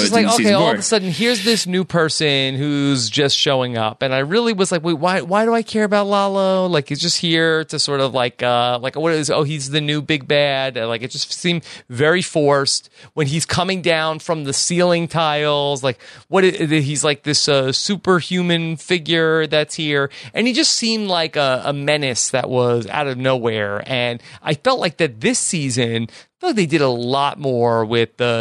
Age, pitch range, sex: 30-49, 130-185 Hz, male